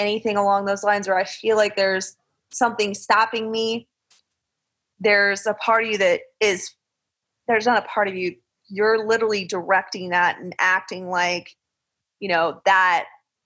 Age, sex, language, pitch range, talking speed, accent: 20-39, female, English, 190-225 Hz, 155 wpm, American